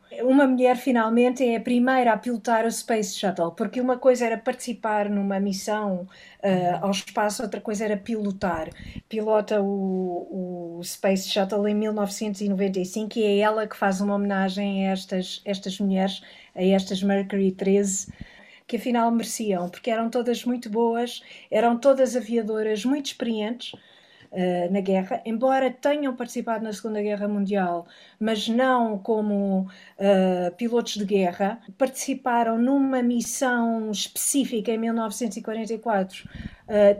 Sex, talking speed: female, 130 wpm